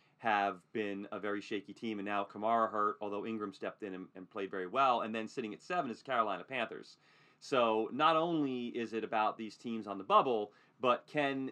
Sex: male